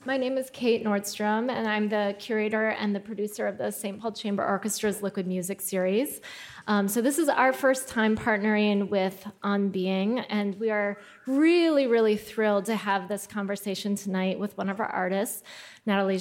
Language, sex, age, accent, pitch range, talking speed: English, female, 20-39, American, 195-230 Hz, 180 wpm